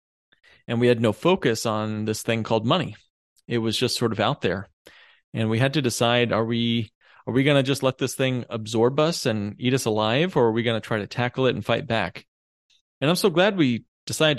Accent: American